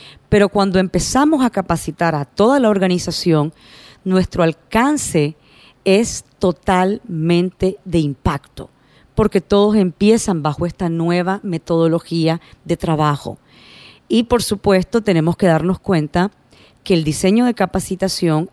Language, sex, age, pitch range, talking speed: Spanish, female, 40-59, 160-205 Hz, 115 wpm